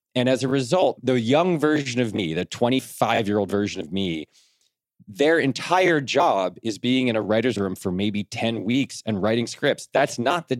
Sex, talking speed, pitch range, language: male, 185 wpm, 110-135 Hz, English